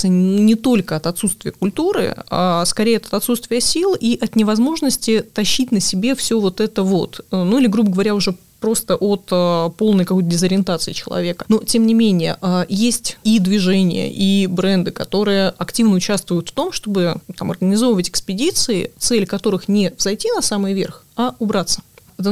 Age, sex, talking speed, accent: 20-39, female, 160 wpm, native